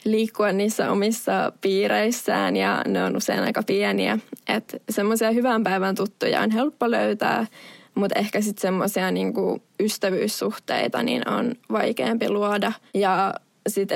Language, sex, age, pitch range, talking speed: Finnish, female, 20-39, 200-245 Hz, 125 wpm